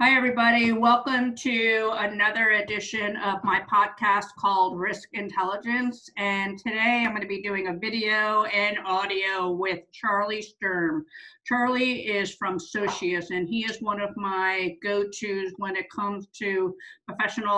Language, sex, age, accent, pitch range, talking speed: English, female, 50-69, American, 195-235 Hz, 145 wpm